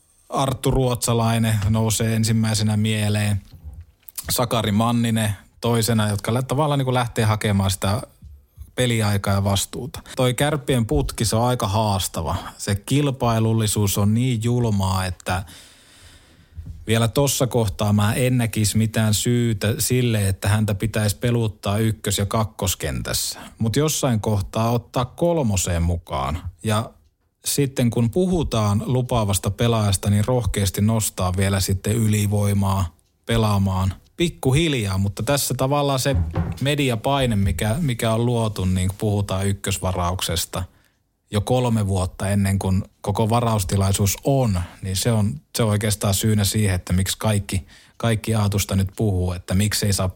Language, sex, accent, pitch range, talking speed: Finnish, male, native, 95-120 Hz, 125 wpm